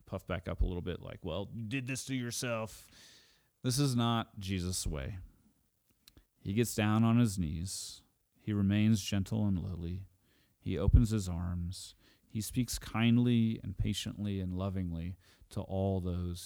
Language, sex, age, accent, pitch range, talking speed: English, male, 30-49, American, 95-115 Hz, 155 wpm